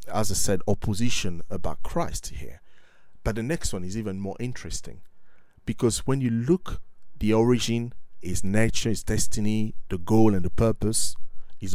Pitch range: 90-115 Hz